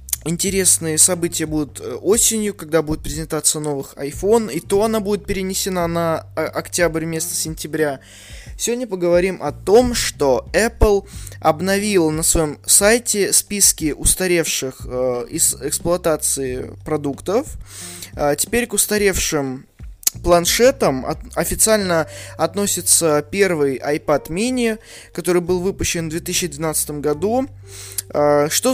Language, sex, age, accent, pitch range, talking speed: Russian, male, 20-39, native, 145-195 Hz, 105 wpm